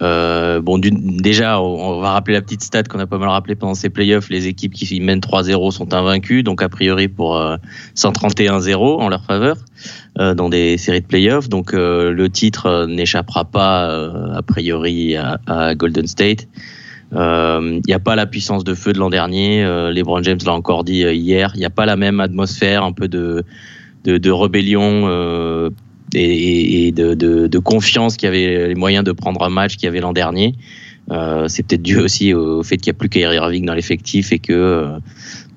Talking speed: 210 wpm